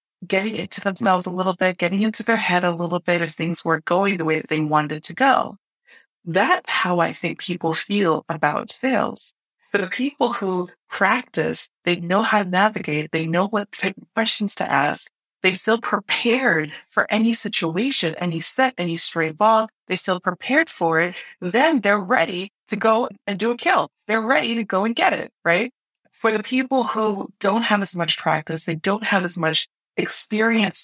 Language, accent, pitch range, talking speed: English, American, 170-225 Hz, 190 wpm